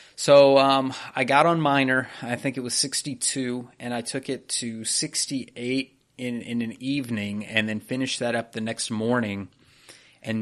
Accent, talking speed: American, 175 wpm